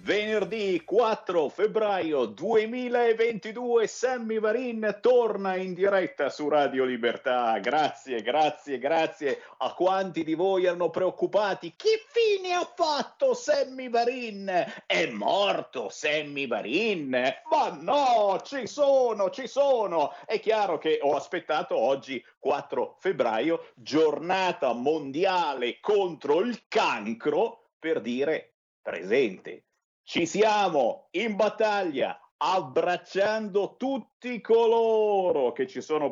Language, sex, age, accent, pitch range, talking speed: Italian, male, 50-69, native, 170-260 Hz, 105 wpm